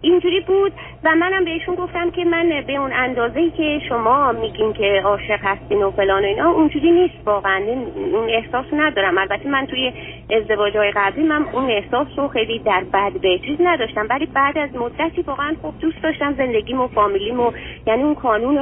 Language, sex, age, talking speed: Persian, female, 30-49, 180 wpm